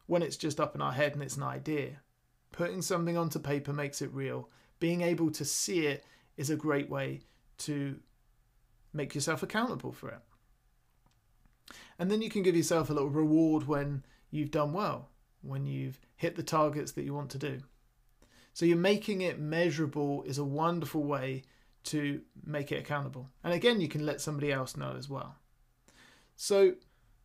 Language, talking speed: English, 175 wpm